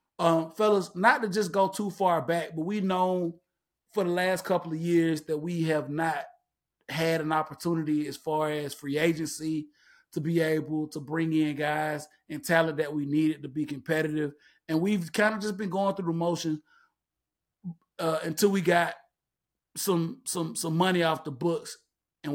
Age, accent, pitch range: 30-49, American, 155-185 Hz